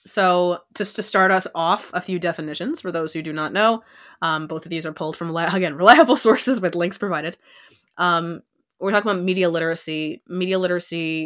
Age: 20-39